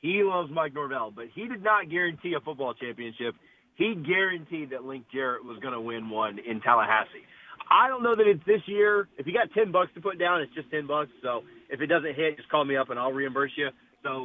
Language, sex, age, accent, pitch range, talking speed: English, male, 30-49, American, 135-175 Hz, 240 wpm